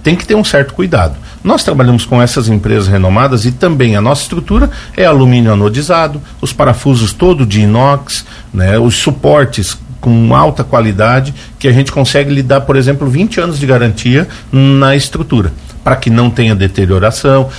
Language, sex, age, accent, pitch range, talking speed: Portuguese, male, 50-69, Brazilian, 110-155 Hz, 170 wpm